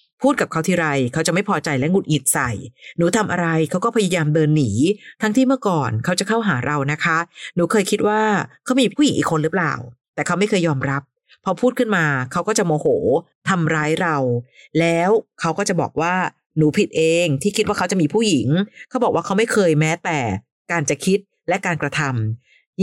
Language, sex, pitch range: Thai, female, 145-195 Hz